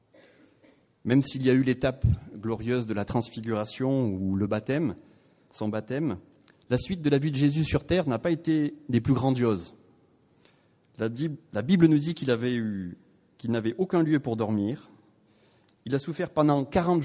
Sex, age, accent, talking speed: male, 30-49, French, 170 wpm